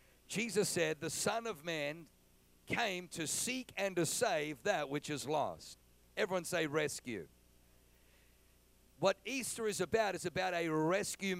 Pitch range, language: 145-195 Hz, English